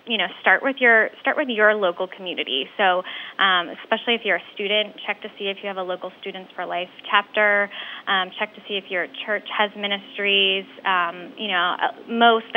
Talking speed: 200 wpm